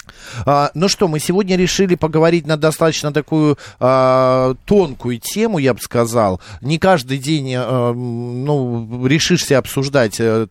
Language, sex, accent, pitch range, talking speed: Russian, male, native, 125-160 Hz, 130 wpm